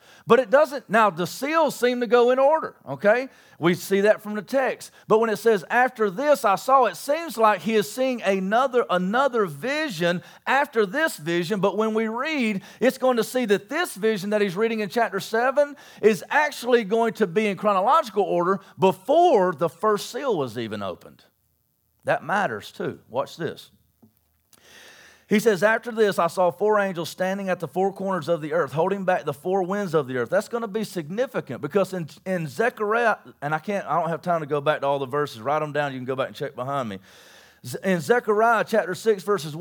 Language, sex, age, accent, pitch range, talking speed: English, male, 40-59, American, 180-240 Hz, 210 wpm